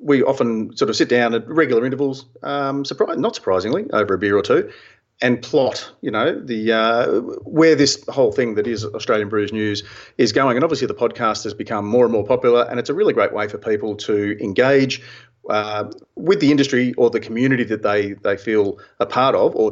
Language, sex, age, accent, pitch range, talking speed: English, male, 40-59, Australian, 110-160 Hz, 215 wpm